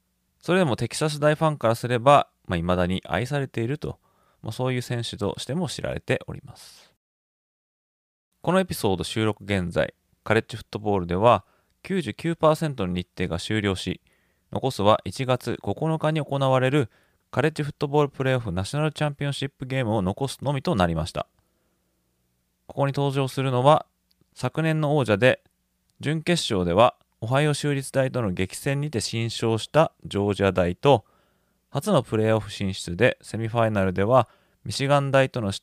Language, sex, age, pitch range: Japanese, male, 20-39, 95-145 Hz